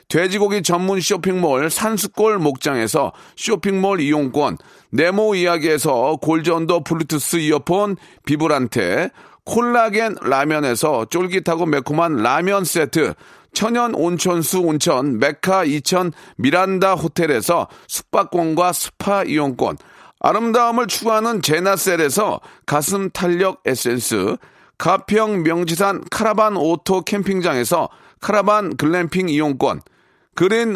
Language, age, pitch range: Korean, 40-59, 160-205 Hz